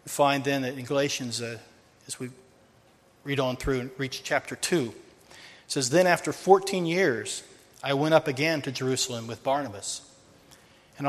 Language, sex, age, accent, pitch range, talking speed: English, male, 40-59, American, 125-145 Hz, 170 wpm